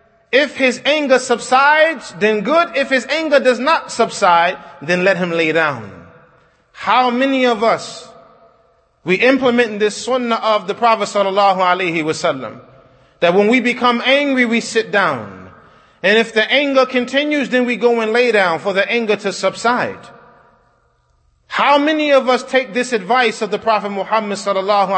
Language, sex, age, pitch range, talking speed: English, male, 30-49, 185-240 Hz, 160 wpm